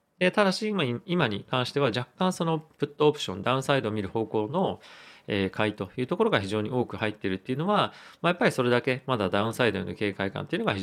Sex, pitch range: male, 105-150 Hz